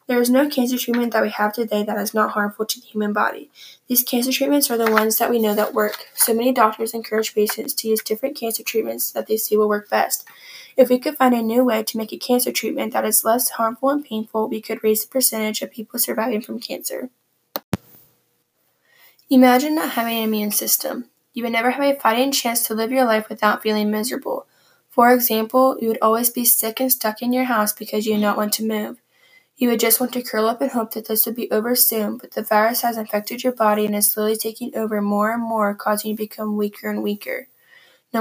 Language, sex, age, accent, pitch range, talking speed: English, female, 10-29, American, 215-245 Hz, 235 wpm